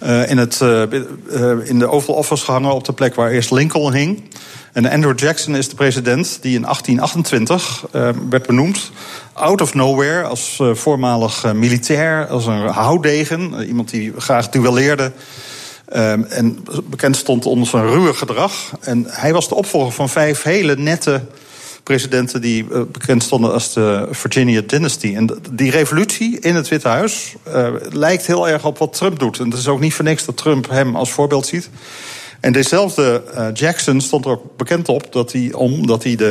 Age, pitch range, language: 40-59, 120-150 Hz, Dutch